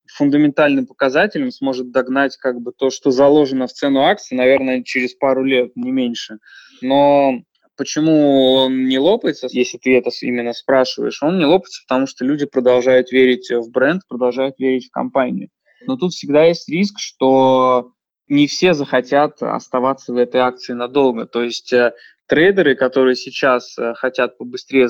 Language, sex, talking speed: Russian, male, 155 wpm